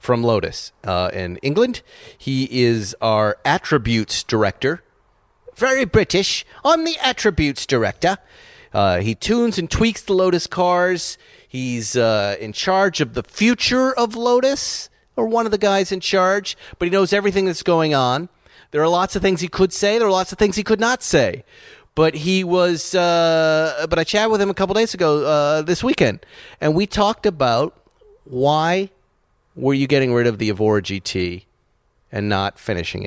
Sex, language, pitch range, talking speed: male, English, 125-200 Hz, 175 wpm